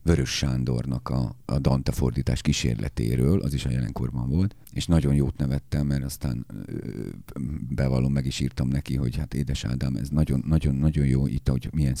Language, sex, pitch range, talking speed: Hungarian, male, 65-80 Hz, 165 wpm